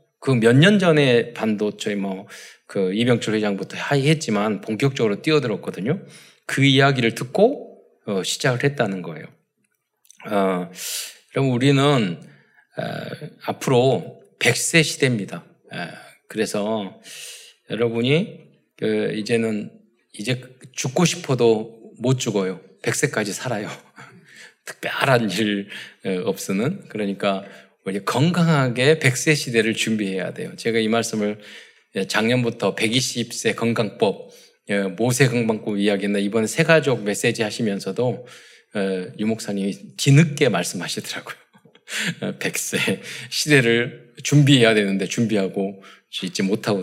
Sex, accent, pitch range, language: male, native, 105-145 Hz, Korean